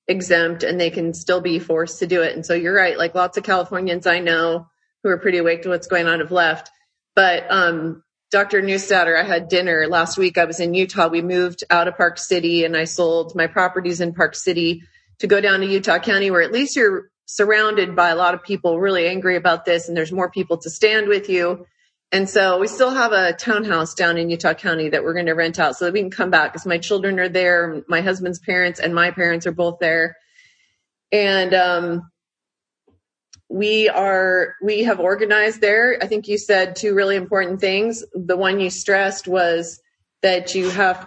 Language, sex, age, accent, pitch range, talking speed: English, female, 30-49, American, 170-200 Hz, 210 wpm